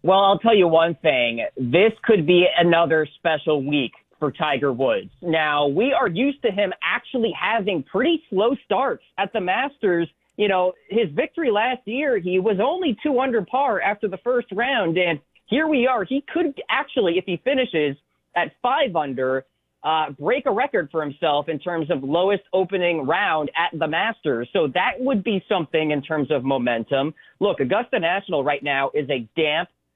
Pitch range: 145-195 Hz